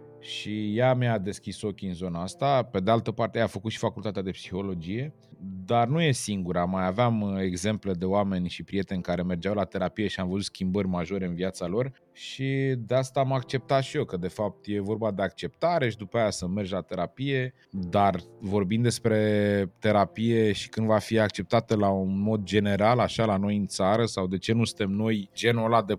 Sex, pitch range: male, 100-120 Hz